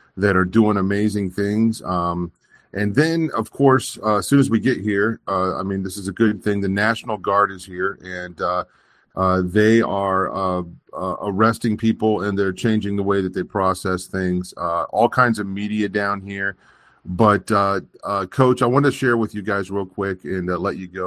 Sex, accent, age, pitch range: male, American, 40-59, 95-110 Hz